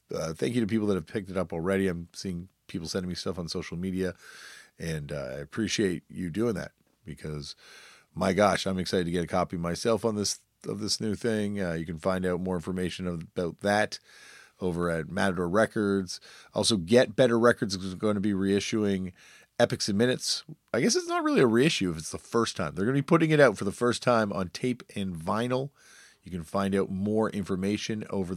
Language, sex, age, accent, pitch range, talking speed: English, male, 40-59, American, 95-125 Hz, 215 wpm